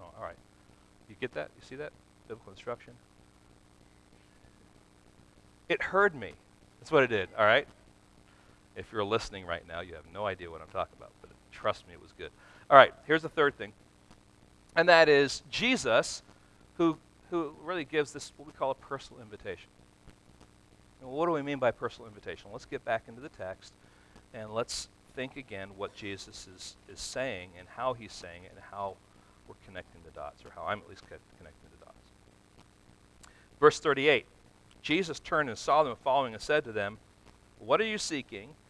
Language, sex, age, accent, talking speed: English, male, 40-59, American, 180 wpm